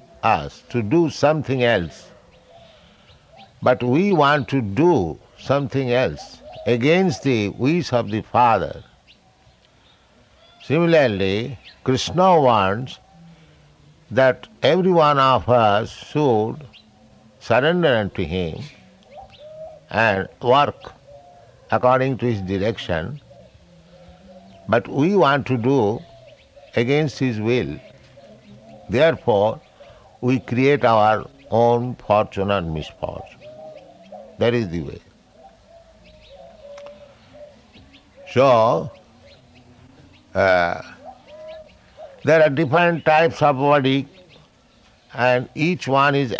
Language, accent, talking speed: English, Indian, 90 wpm